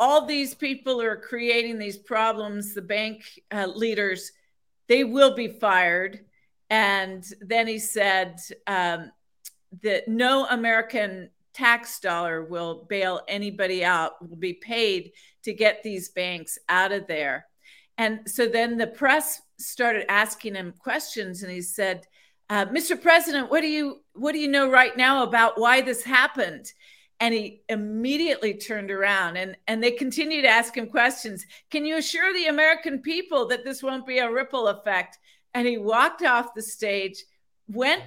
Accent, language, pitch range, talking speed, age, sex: American, English, 200-270 Hz, 160 wpm, 50-69, female